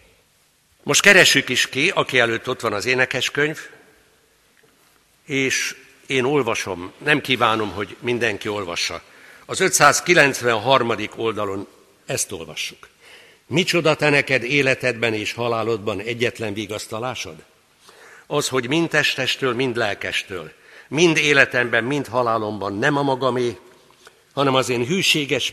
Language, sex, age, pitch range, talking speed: Hungarian, male, 60-79, 120-150 Hz, 115 wpm